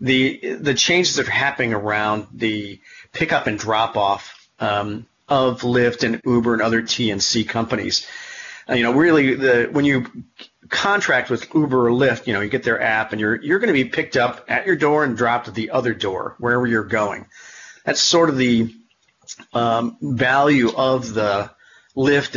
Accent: American